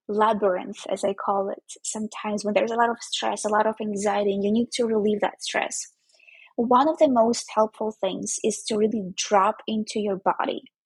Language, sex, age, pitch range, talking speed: English, female, 20-39, 200-240 Hz, 200 wpm